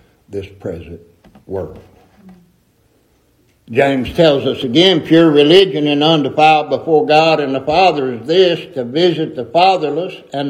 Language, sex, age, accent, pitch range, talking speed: English, male, 60-79, American, 125-190 Hz, 130 wpm